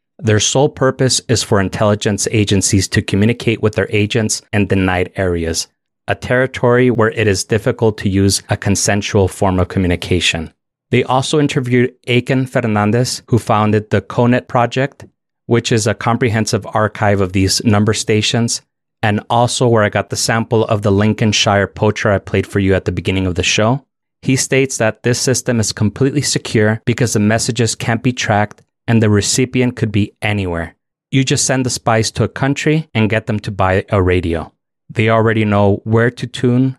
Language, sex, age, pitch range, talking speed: English, male, 30-49, 100-125 Hz, 180 wpm